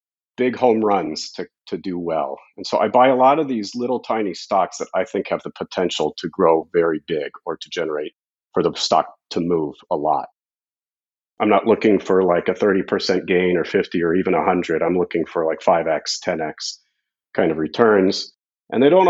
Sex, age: male, 40-59